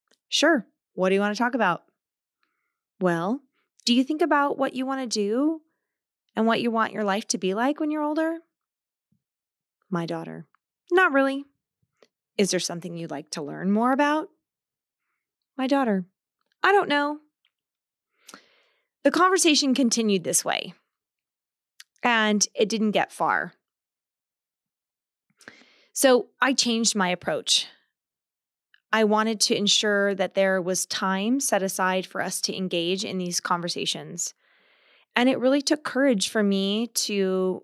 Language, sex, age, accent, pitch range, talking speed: English, female, 20-39, American, 185-275 Hz, 140 wpm